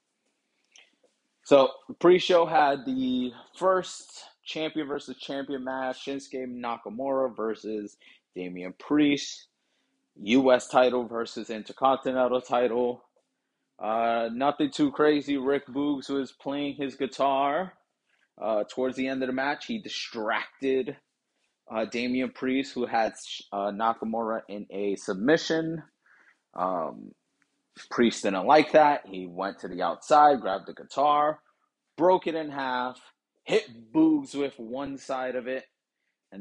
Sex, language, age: male, English, 30-49